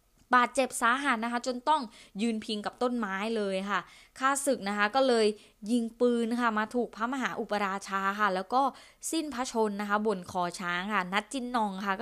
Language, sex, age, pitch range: Thai, female, 20-39, 190-240 Hz